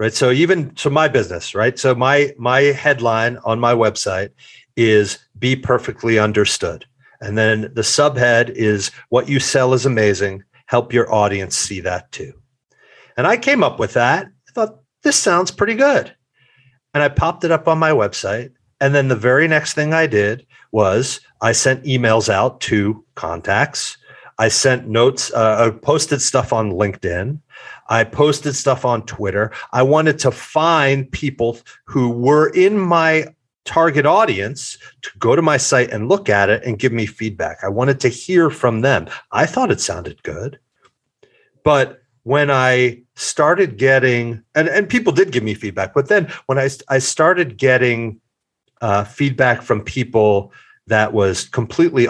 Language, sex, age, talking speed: English, male, 40-59, 165 wpm